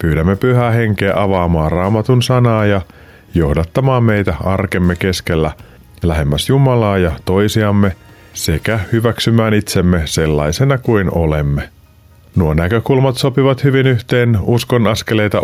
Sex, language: male, Finnish